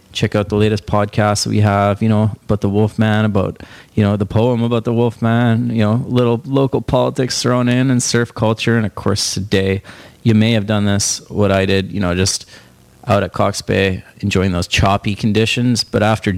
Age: 30-49